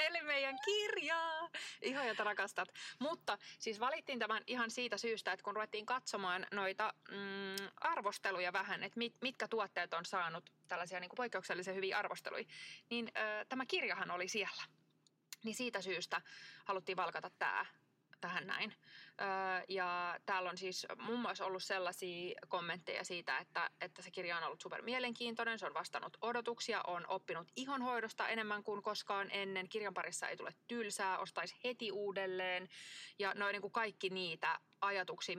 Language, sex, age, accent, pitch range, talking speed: Finnish, female, 20-39, native, 180-215 Hz, 155 wpm